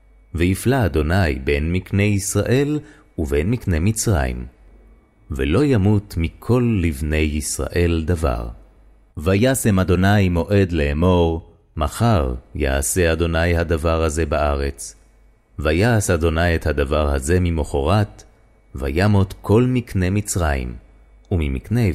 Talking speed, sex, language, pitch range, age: 85 wpm, male, Hebrew, 75-110 Hz, 30-49